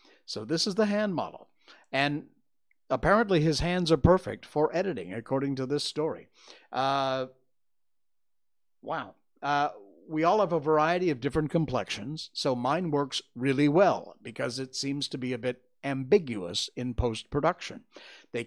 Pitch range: 130-175 Hz